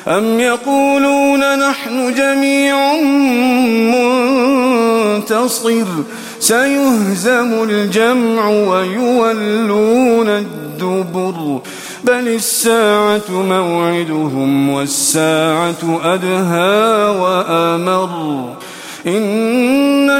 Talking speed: 50 wpm